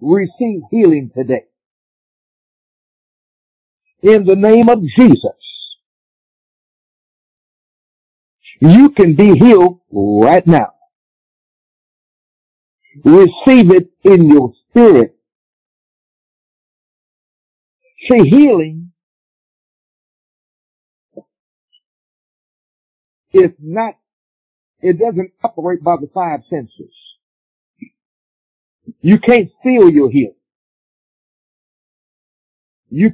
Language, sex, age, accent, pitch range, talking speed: English, male, 50-69, American, 175-260 Hz, 65 wpm